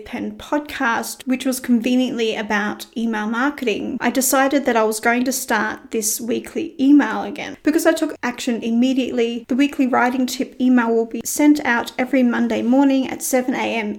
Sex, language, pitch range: female, English, 230-265 Hz